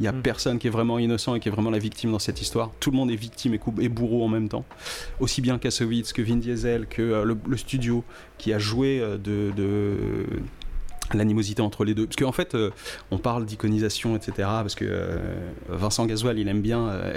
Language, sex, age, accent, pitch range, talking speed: French, male, 30-49, French, 100-120 Hz, 235 wpm